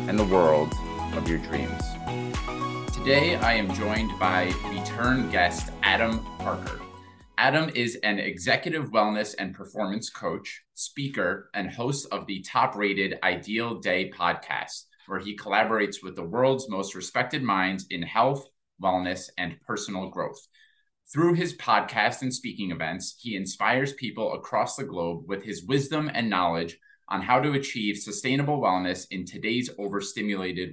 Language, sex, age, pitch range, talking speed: English, male, 20-39, 95-130 Hz, 145 wpm